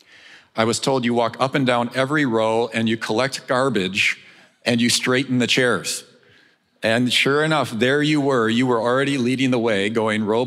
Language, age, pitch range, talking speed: English, 50-69, 115-145 Hz, 190 wpm